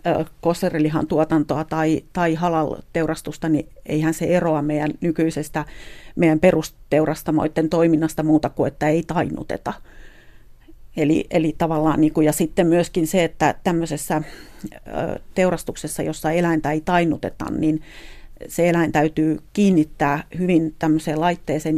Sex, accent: female, native